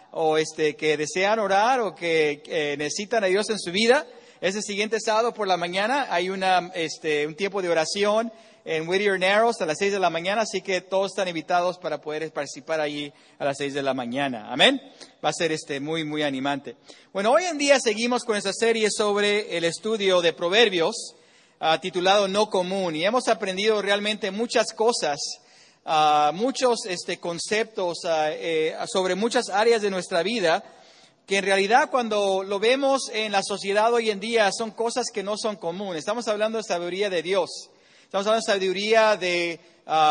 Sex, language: male, English